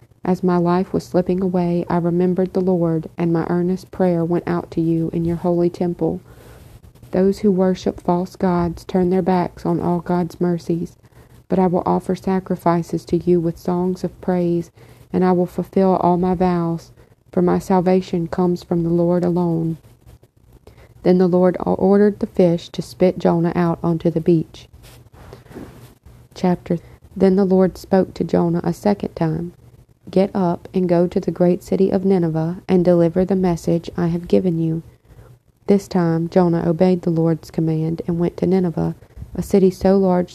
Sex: female